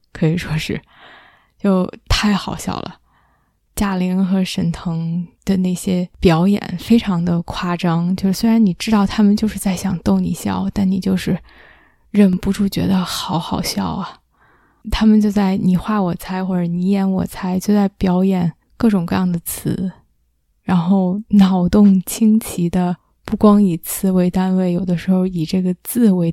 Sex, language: female, Chinese